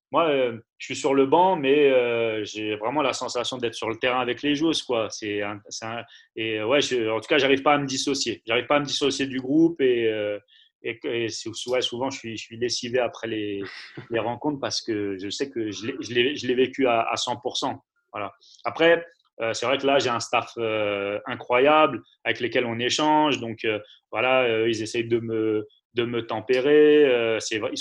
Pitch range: 115-140 Hz